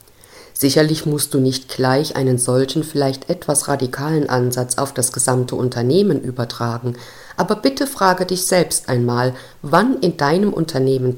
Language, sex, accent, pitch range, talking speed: German, female, German, 130-185 Hz, 140 wpm